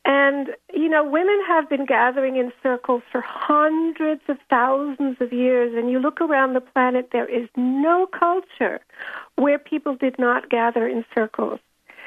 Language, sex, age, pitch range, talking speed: English, female, 60-79, 245-295 Hz, 160 wpm